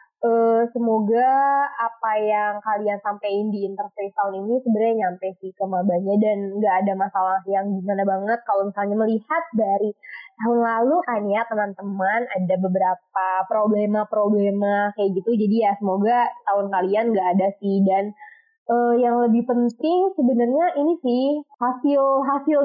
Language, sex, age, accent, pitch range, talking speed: Indonesian, female, 20-39, native, 200-255 Hz, 140 wpm